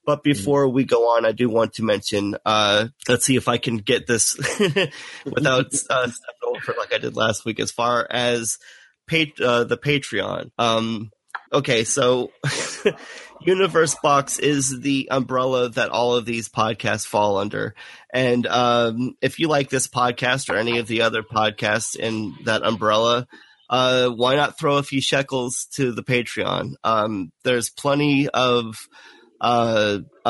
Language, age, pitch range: English, 30-49, 115-135 Hz